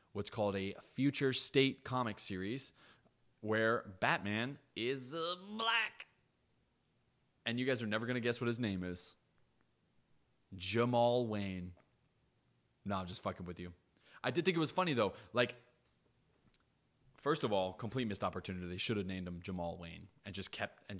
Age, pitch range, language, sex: 20-39, 100-130 Hz, English, male